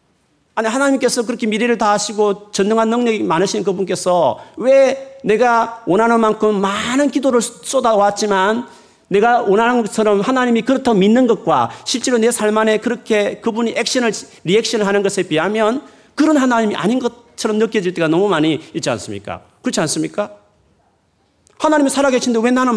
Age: 40-59